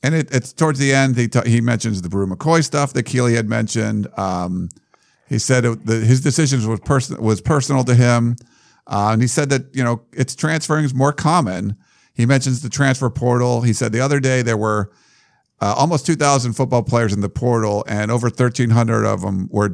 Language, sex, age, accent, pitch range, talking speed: English, male, 50-69, American, 110-135 Hz, 215 wpm